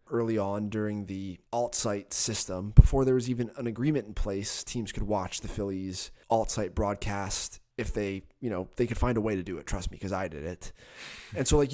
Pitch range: 105-135 Hz